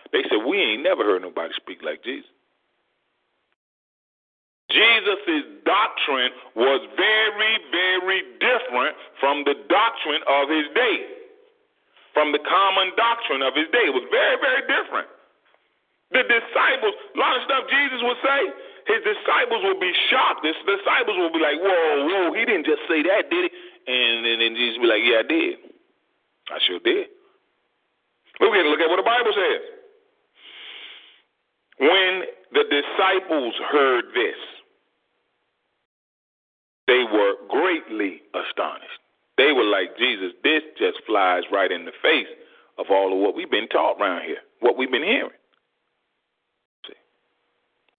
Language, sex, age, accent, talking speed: English, male, 40-59, American, 150 wpm